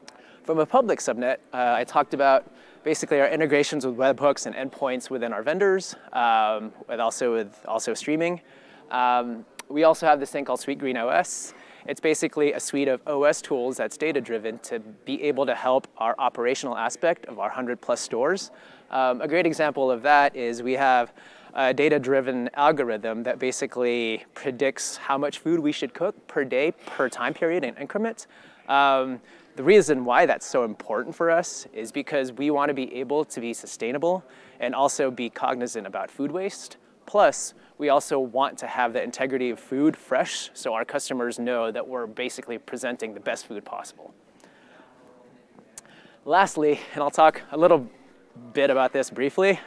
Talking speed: 180 wpm